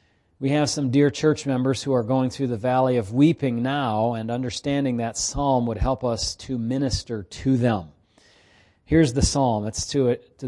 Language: English